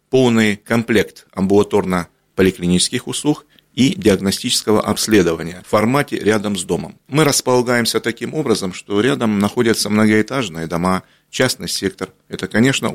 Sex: male